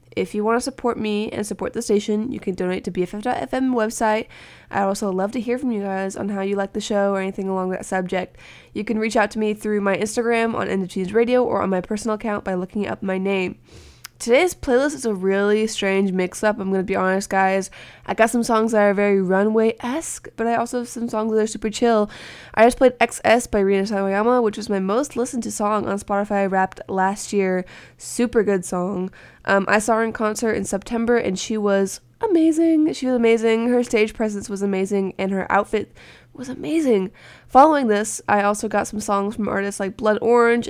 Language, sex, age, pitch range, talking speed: English, female, 20-39, 195-225 Hz, 220 wpm